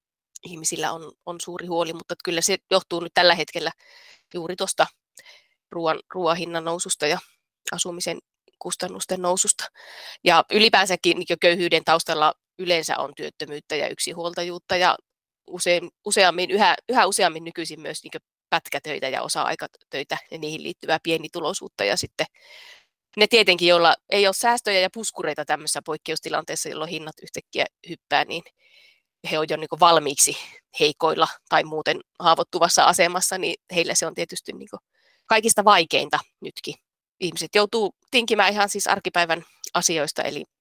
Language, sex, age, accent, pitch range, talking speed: Finnish, female, 30-49, native, 160-195 Hz, 135 wpm